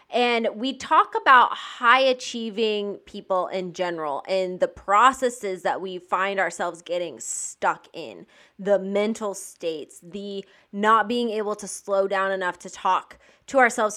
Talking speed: 145 wpm